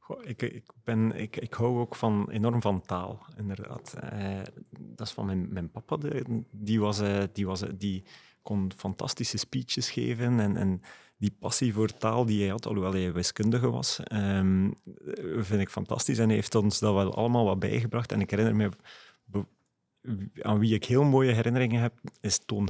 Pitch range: 100-115 Hz